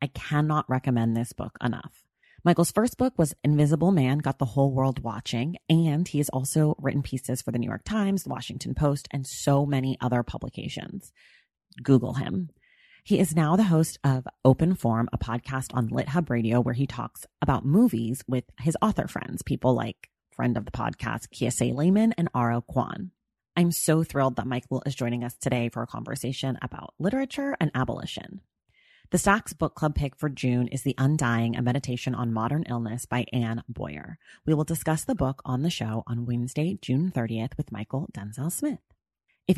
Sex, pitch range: female, 125-160 Hz